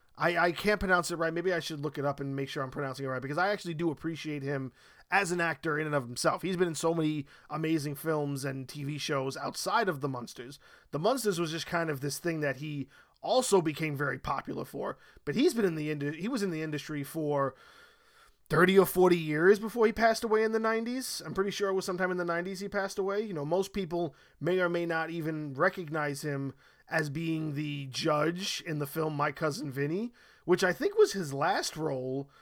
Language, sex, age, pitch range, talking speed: English, male, 20-39, 145-180 Hz, 230 wpm